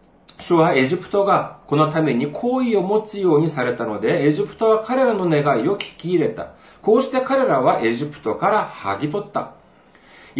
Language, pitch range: Japanese, 135-205 Hz